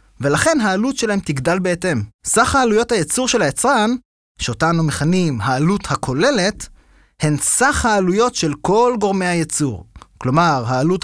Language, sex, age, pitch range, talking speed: Hebrew, male, 20-39, 150-225 Hz, 130 wpm